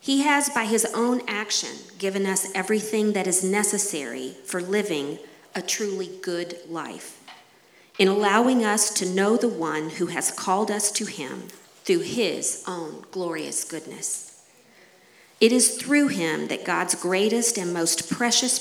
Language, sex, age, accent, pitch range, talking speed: English, female, 40-59, American, 175-225 Hz, 150 wpm